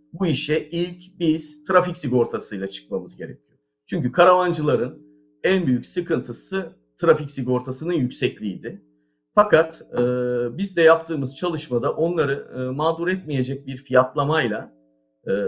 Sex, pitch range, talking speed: male, 120-155 Hz, 110 wpm